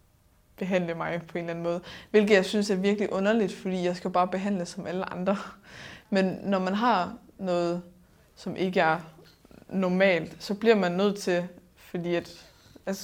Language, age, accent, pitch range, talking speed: Danish, 20-39, native, 175-205 Hz, 175 wpm